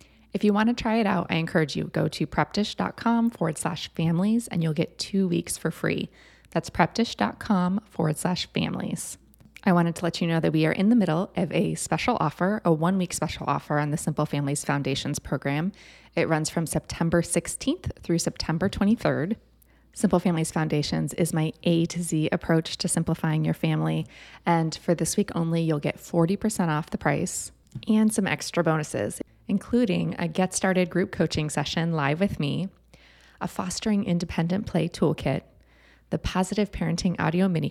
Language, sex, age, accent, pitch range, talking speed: English, female, 20-39, American, 155-200 Hz, 175 wpm